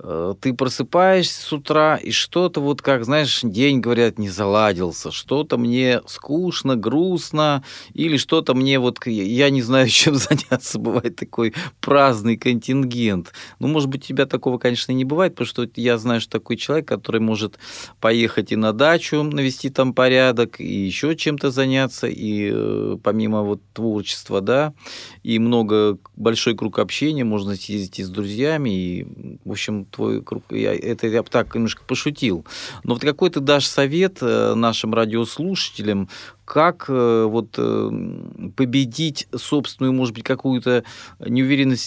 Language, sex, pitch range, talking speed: Russian, male, 110-135 Hz, 140 wpm